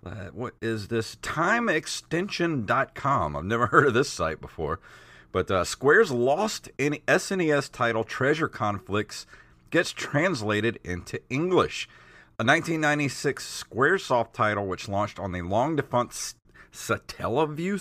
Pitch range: 95-140 Hz